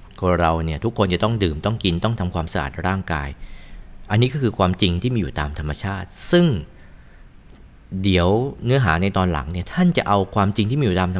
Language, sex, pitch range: Thai, male, 85-110 Hz